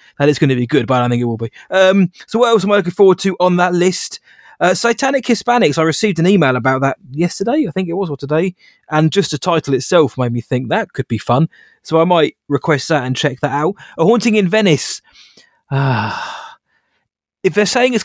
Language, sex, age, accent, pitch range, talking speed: English, male, 20-39, British, 130-180 Hz, 235 wpm